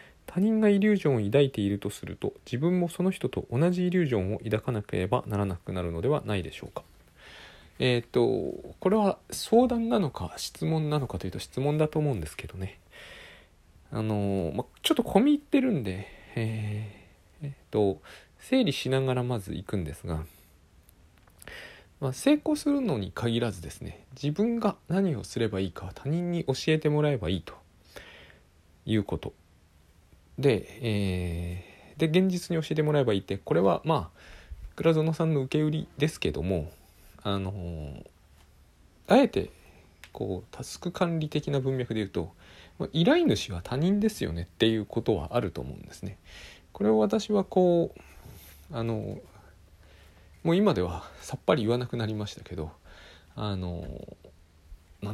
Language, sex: Japanese, male